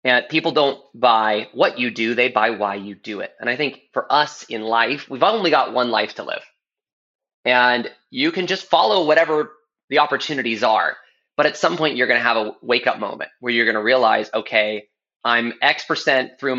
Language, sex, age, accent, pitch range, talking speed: English, male, 20-39, American, 115-165 Hz, 205 wpm